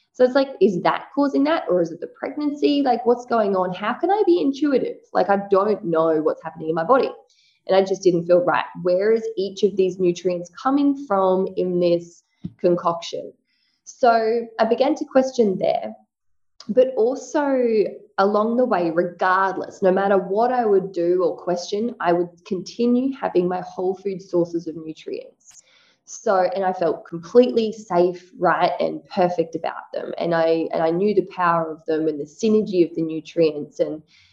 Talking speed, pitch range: 180 wpm, 175-230 Hz